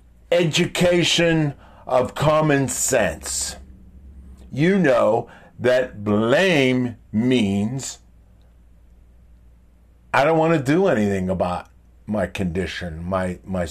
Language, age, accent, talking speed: English, 50-69, American, 90 wpm